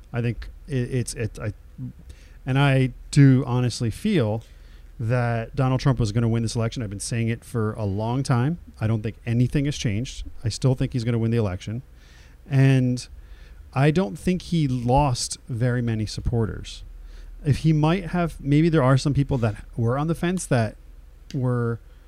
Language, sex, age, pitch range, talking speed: English, male, 40-59, 100-140 Hz, 180 wpm